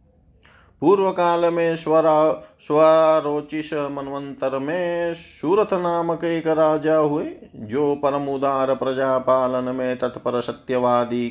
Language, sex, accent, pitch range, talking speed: Hindi, male, native, 120-145 Hz, 100 wpm